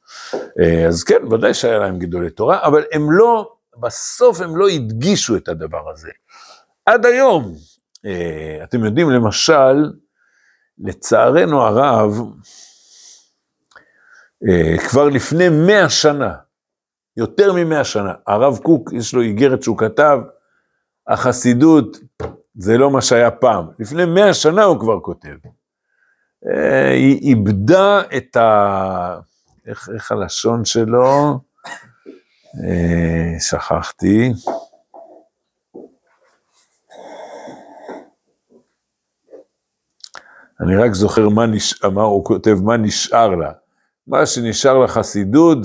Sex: male